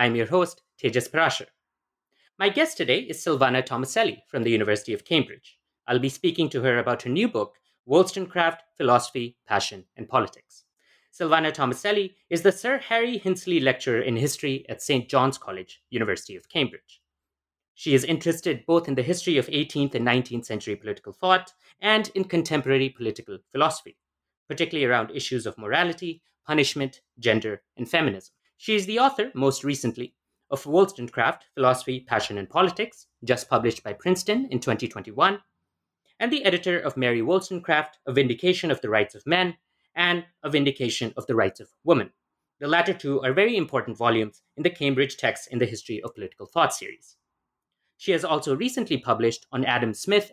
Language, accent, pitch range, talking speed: English, Indian, 125-180 Hz, 165 wpm